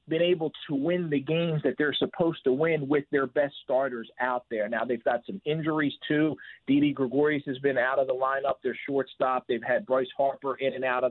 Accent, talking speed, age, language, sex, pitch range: American, 220 wpm, 40-59, English, male, 125-155 Hz